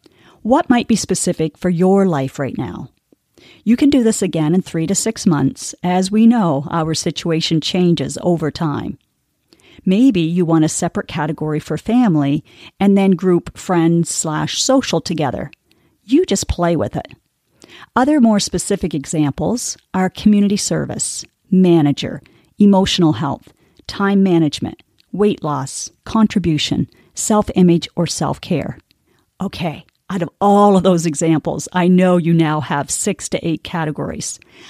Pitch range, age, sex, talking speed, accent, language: 160-200 Hz, 40-59, female, 140 wpm, American, English